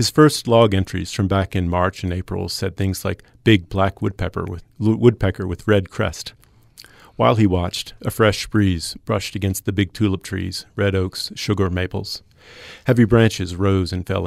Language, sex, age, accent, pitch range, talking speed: English, male, 40-59, American, 95-115 Hz, 175 wpm